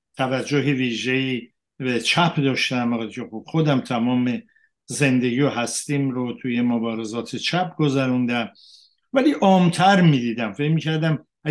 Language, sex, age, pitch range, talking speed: Persian, male, 60-79, 135-200 Hz, 105 wpm